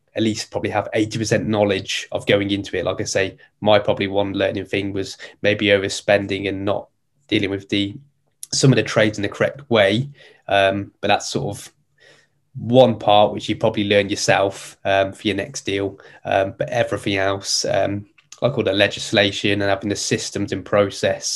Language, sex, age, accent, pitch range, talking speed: English, male, 20-39, British, 95-105 Hz, 190 wpm